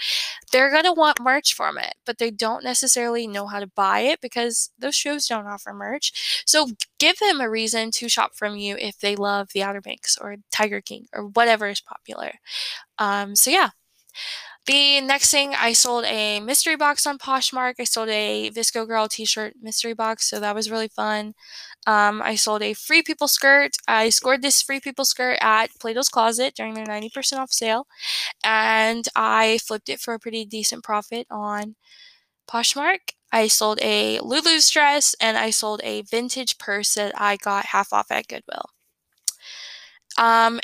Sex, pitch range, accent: female, 215-275 Hz, American